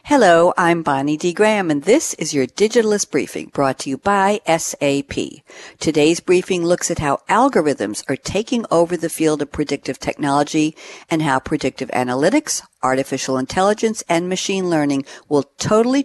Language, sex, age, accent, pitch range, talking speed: English, female, 60-79, American, 150-230 Hz, 155 wpm